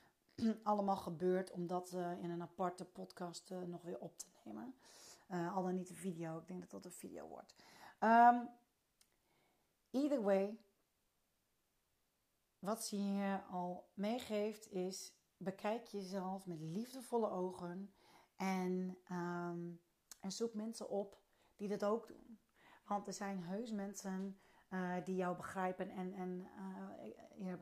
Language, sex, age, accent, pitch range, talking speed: Dutch, female, 40-59, Dutch, 185-210 Hz, 135 wpm